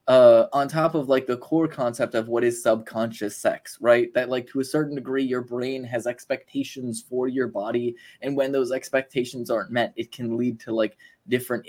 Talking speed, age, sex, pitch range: 200 wpm, 20-39, male, 115-140 Hz